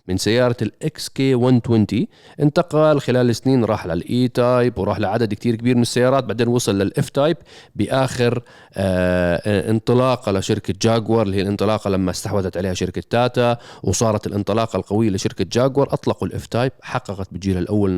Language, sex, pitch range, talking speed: Arabic, male, 100-130 Hz, 145 wpm